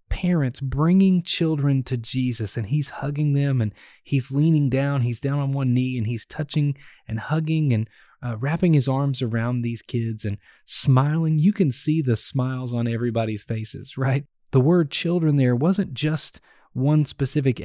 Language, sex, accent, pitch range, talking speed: English, male, American, 125-155 Hz, 170 wpm